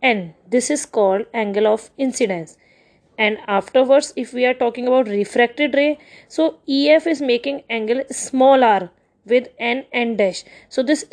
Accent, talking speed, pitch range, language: native, 155 wpm, 220-275 Hz, Hindi